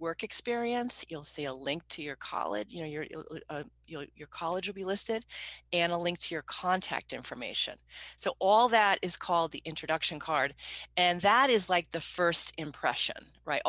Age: 40-59